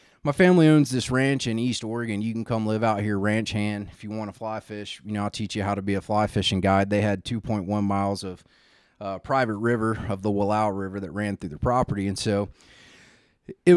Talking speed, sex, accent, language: 235 wpm, male, American, English